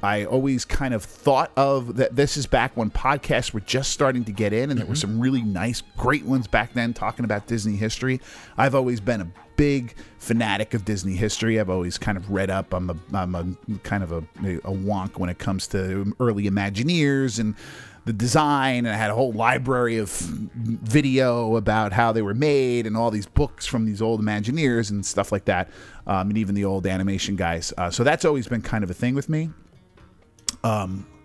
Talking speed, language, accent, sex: 210 wpm, English, American, male